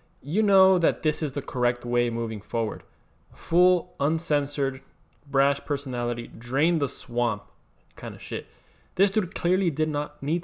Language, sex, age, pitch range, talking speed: English, male, 20-39, 115-145 Hz, 150 wpm